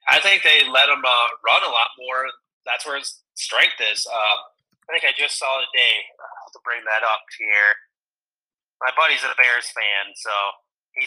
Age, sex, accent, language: 30-49, male, American, English